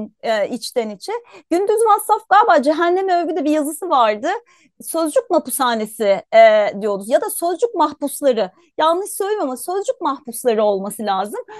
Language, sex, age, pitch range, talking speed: Turkish, female, 30-49, 245-360 Hz, 130 wpm